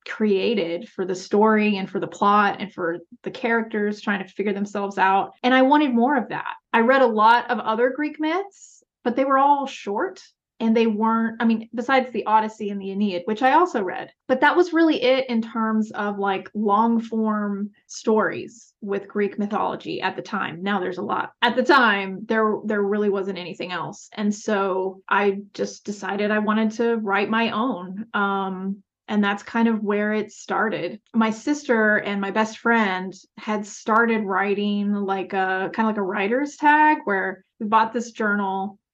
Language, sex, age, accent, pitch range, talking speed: English, female, 30-49, American, 200-235 Hz, 190 wpm